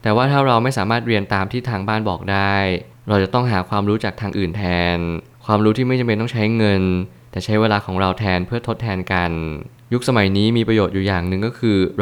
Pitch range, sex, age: 100-120 Hz, male, 20-39